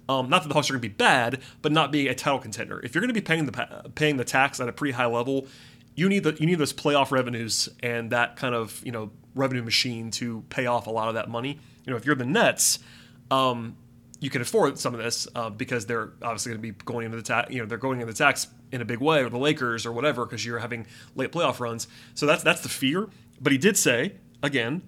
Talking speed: 270 wpm